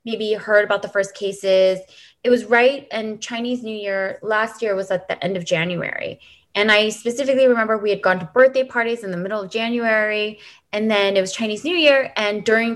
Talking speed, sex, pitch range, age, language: 210 wpm, female, 175-220 Hz, 20-39, English